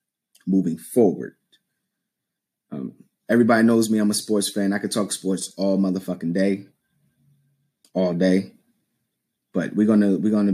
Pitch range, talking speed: 100-125 Hz, 135 wpm